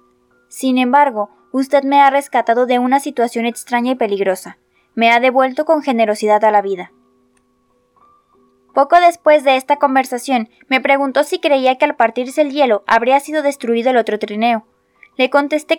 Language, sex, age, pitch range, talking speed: Spanish, female, 20-39, 220-280 Hz, 160 wpm